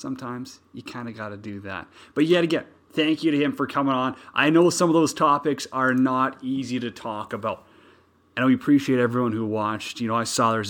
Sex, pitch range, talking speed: male, 105-135 Hz, 230 wpm